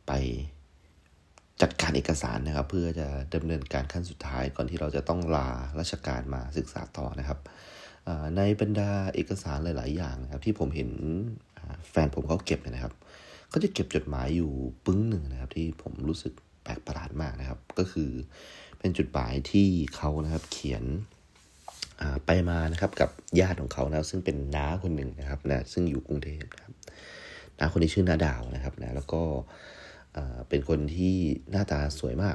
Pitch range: 70-85 Hz